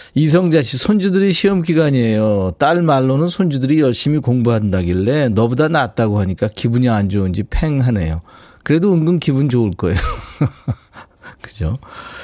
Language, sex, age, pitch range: Korean, male, 40-59, 100-155 Hz